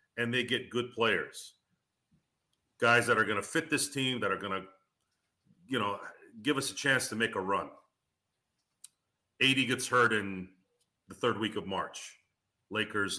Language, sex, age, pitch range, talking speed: English, male, 40-59, 105-135 Hz, 170 wpm